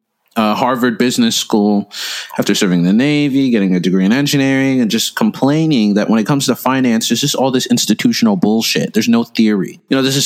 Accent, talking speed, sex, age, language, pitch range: American, 210 wpm, male, 30-49, English, 105-160 Hz